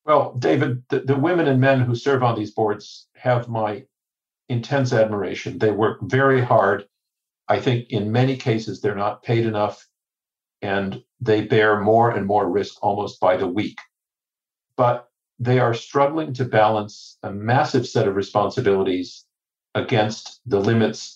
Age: 50-69